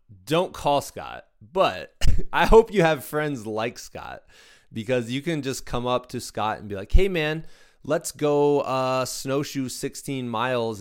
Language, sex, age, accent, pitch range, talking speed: English, male, 20-39, American, 100-130 Hz, 165 wpm